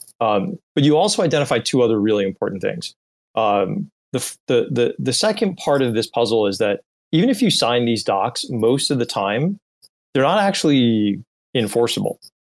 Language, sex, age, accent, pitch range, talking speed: English, male, 30-49, American, 100-135 Hz, 170 wpm